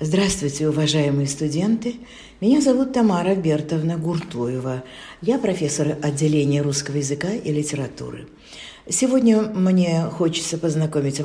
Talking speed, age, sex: 100 wpm, 50-69, female